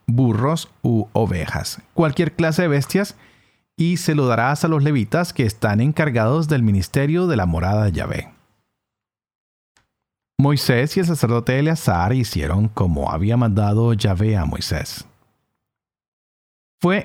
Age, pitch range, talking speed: 40-59, 105-150 Hz, 130 wpm